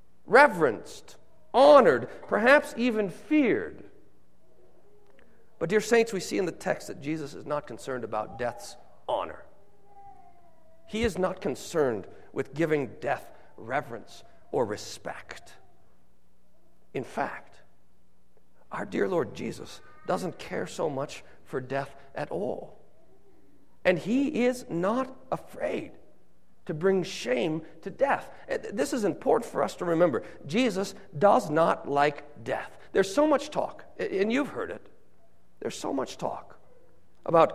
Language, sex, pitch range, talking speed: English, male, 160-265 Hz, 130 wpm